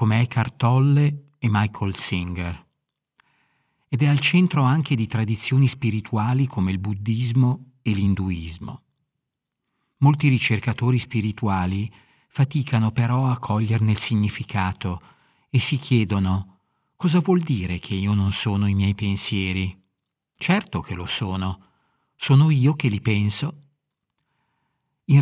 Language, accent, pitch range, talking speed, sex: Italian, native, 100-135 Hz, 120 wpm, male